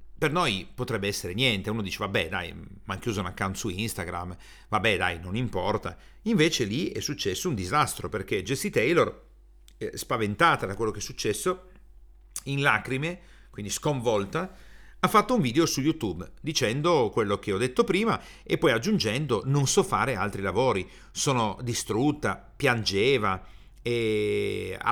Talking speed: 155 wpm